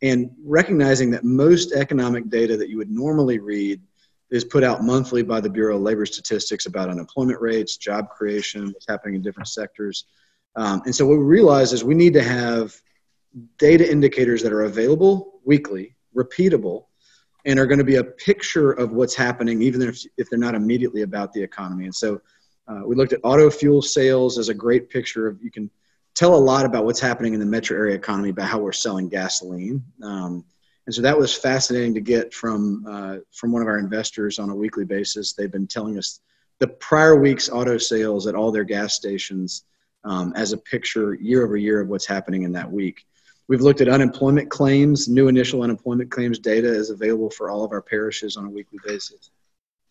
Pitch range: 105-130 Hz